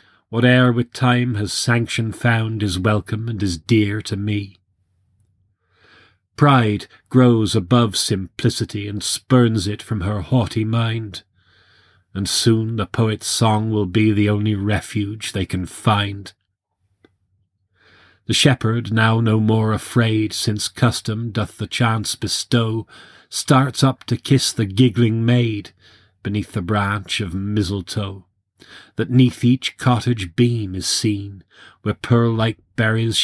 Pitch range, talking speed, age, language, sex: 100-115 Hz, 130 wpm, 40-59, English, male